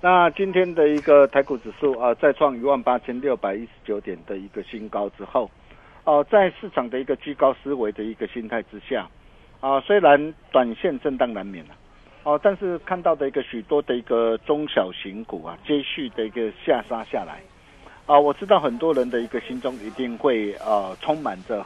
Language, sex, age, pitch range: Chinese, male, 50-69, 120-180 Hz